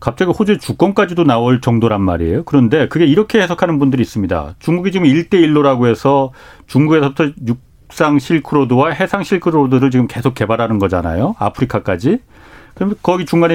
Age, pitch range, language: 40-59, 115-165 Hz, Korean